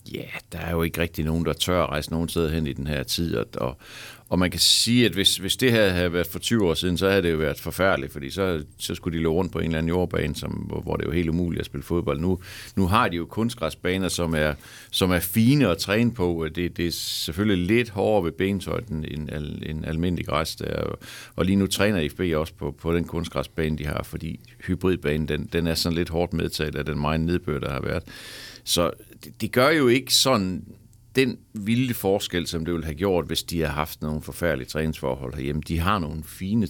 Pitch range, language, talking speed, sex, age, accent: 80-105 Hz, Danish, 235 wpm, male, 60-79, native